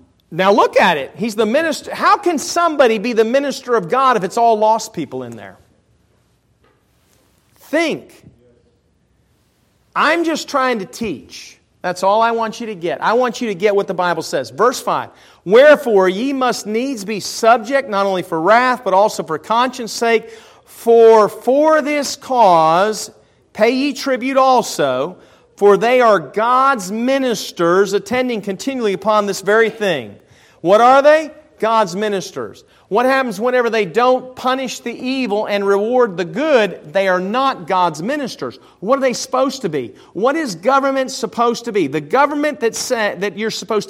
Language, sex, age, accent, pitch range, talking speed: English, male, 40-59, American, 185-255 Hz, 165 wpm